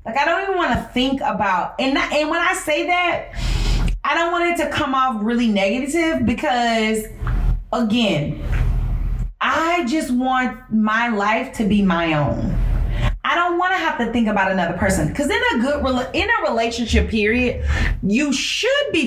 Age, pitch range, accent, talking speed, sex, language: 30-49, 205-300 Hz, American, 175 wpm, female, English